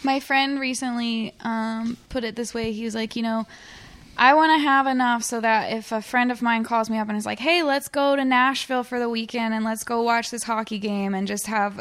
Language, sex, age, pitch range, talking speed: English, female, 20-39, 195-230 Hz, 250 wpm